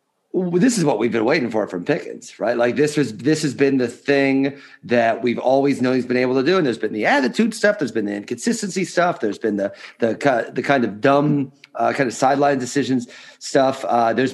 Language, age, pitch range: English, 40-59, 125-165 Hz